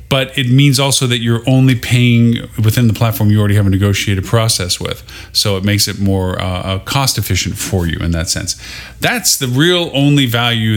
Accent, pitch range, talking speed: American, 100-125 Hz, 200 wpm